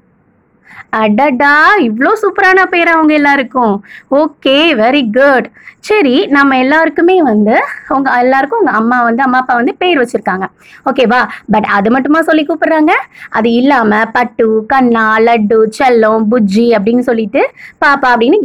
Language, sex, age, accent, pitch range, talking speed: Tamil, female, 20-39, native, 225-315 Hz, 40 wpm